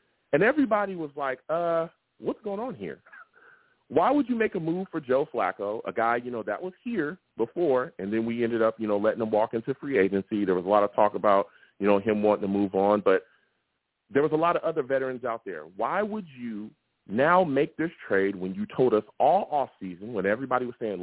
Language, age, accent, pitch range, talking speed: English, 40-59, American, 105-160 Hz, 230 wpm